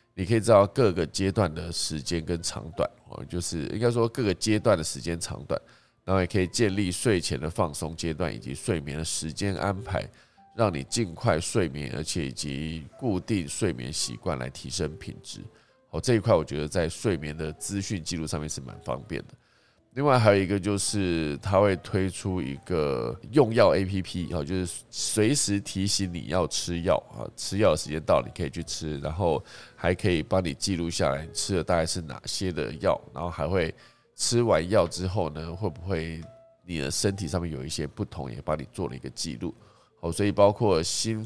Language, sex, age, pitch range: Chinese, male, 20-39, 80-105 Hz